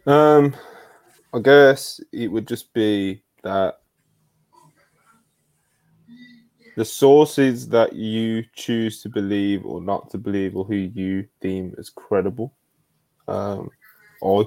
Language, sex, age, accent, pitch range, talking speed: English, male, 20-39, British, 100-125 Hz, 110 wpm